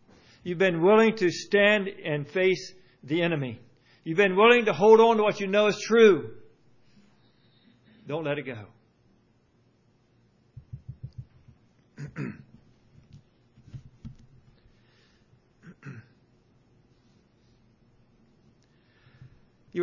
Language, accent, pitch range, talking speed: English, American, 125-185 Hz, 80 wpm